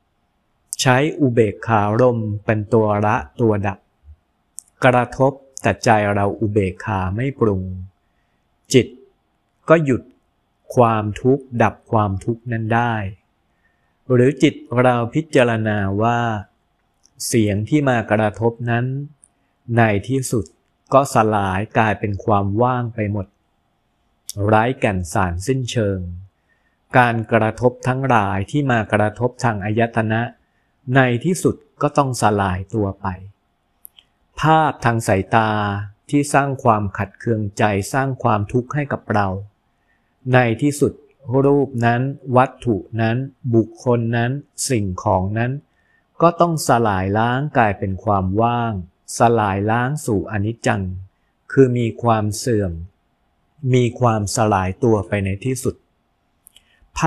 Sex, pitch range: male, 100-125 Hz